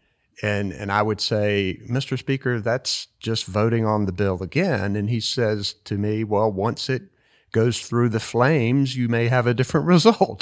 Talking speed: 185 wpm